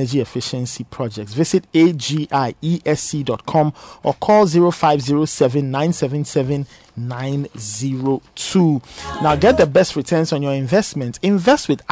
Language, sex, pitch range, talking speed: English, male, 130-165 Hz, 105 wpm